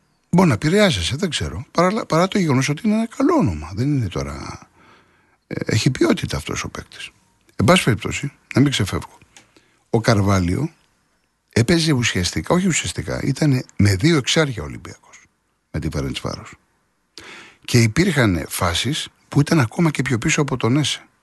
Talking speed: 150 wpm